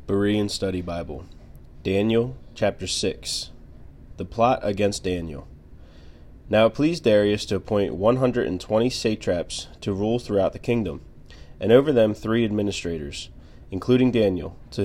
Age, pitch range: 20-39, 90-115 Hz